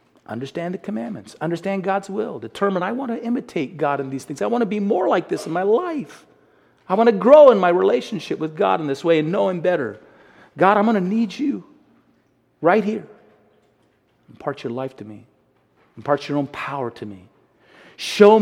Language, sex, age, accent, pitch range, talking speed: English, male, 40-59, American, 140-195 Hz, 200 wpm